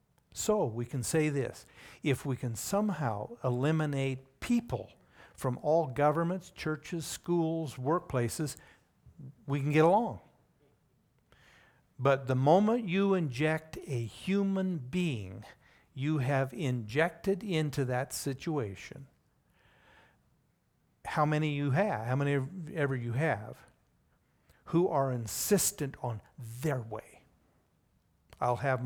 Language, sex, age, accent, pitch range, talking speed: English, male, 60-79, American, 125-155 Hz, 110 wpm